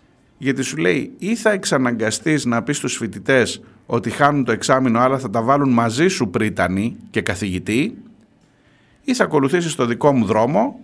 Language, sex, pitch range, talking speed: Greek, male, 110-155 Hz, 165 wpm